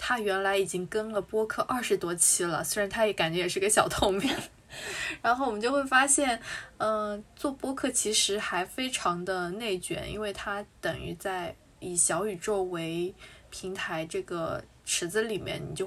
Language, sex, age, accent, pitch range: Chinese, female, 20-39, native, 185-235 Hz